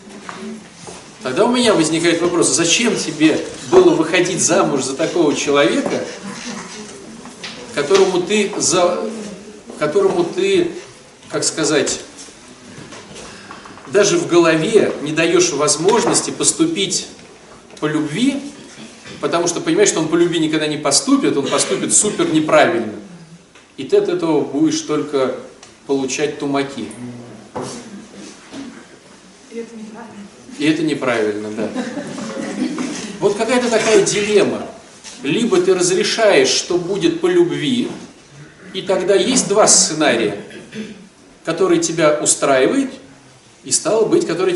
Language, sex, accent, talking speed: Russian, male, native, 105 wpm